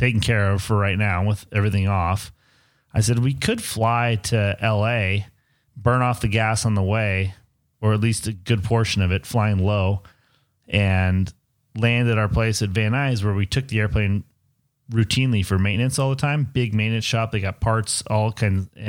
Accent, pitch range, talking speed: American, 105-130 Hz, 190 wpm